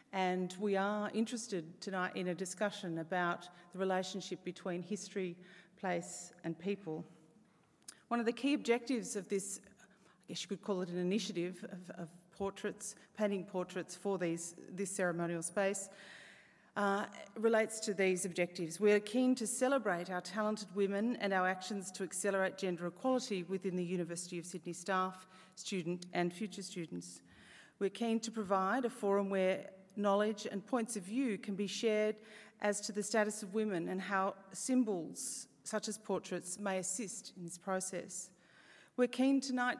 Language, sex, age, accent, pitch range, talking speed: English, female, 40-59, Australian, 180-215 Hz, 160 wpm